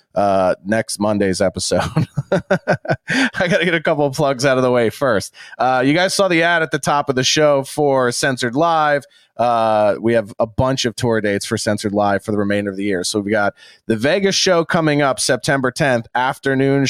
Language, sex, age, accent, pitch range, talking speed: English, male, 30-49, American, 110-160 Hz, 215 wpm